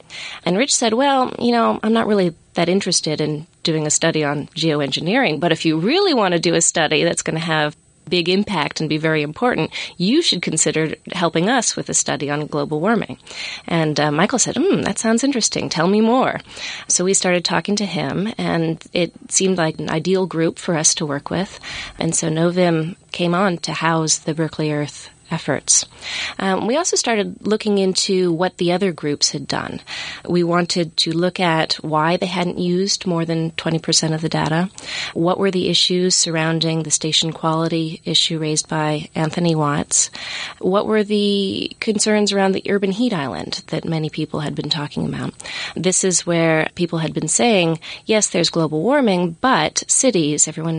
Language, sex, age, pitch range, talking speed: English, female, 30-49, 160-195 Hz, 185 wpm